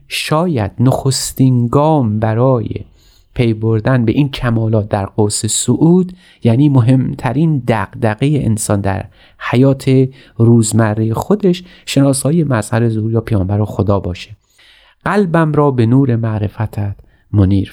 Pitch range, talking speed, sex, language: 105-135 Hz, 110 wpm, male, Persian